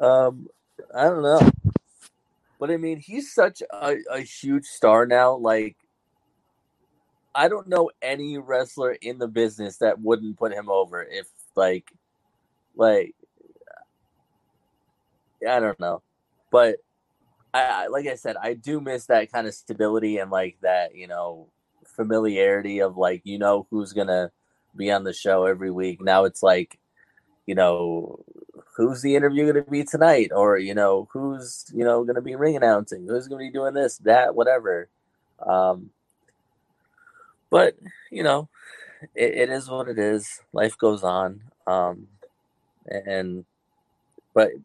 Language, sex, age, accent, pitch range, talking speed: English, male, 20-39, American, 95-135 Hz, 150 wpm